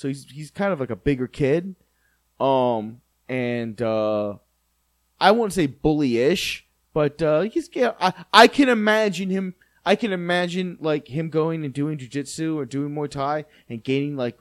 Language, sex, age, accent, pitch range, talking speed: English, male, 20-39, American, 130-190 Hz, 175 wpm